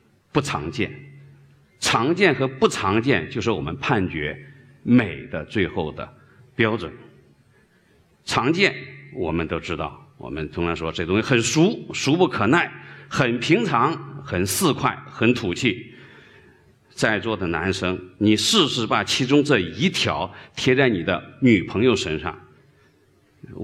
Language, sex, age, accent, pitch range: Chinese, male, 50-69, native, 100-145 Hz